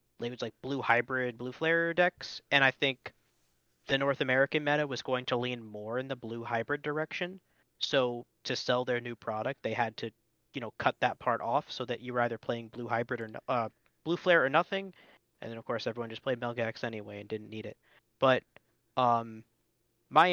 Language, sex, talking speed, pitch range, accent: English, male, 205 wpm, 120-145 Hz, American